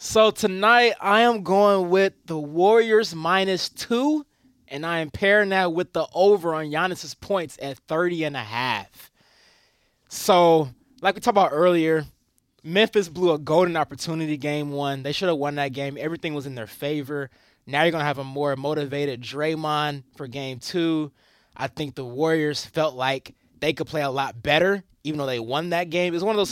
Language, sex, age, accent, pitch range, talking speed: English, male, 20-39, American, 145-200 Hz, 190 wpm